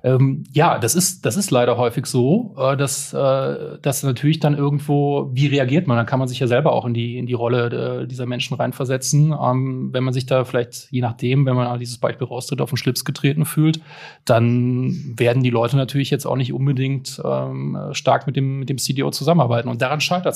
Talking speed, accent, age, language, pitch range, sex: 200 wpm, German, 30-49, German, 125-155 Hz, male